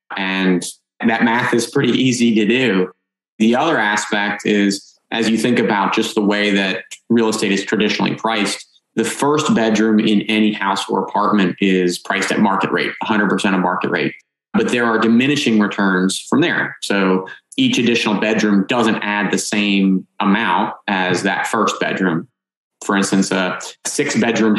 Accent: American